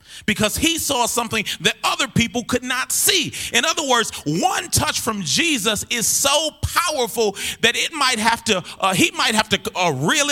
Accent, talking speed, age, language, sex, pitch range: American, 185 wpm, 30-49, English, male, 155-230 Hz